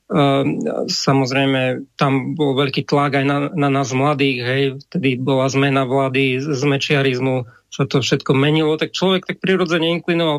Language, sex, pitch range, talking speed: Slovak, male, 140-160 Hz, 145 wpm